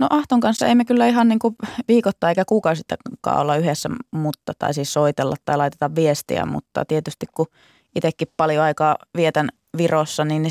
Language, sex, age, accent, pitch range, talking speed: Finnish, female, 20-39, native, 145-170 Hz, 165 wpm